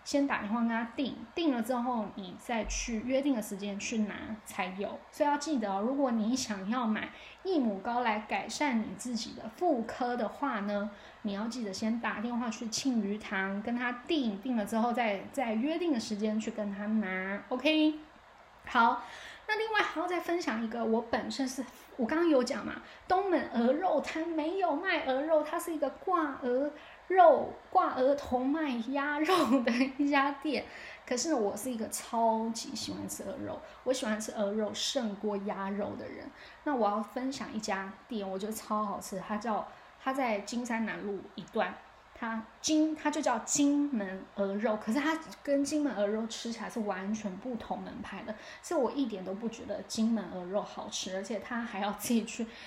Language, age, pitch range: Chinese, 10-29, 215-280 Hz